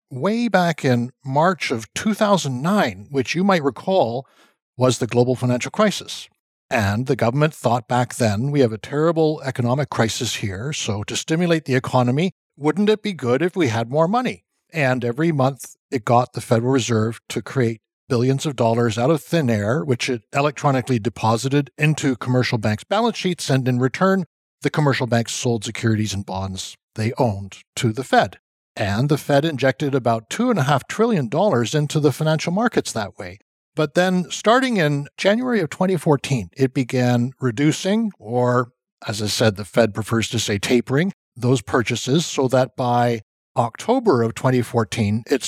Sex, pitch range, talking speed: male, 120-155 Hz, 165 wpm